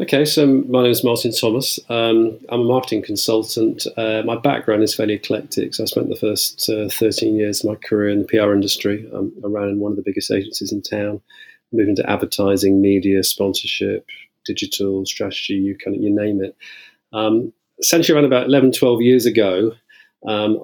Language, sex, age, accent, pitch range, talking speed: English, male, 40-59, British, 100-120 Hz, 185 wpm